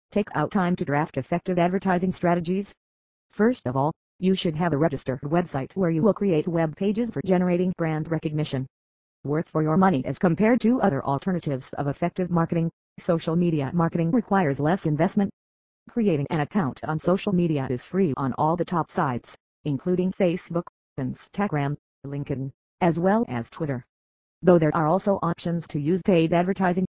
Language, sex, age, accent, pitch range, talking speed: English, female, 40-59, American, 145-185 Hz, 165 wpm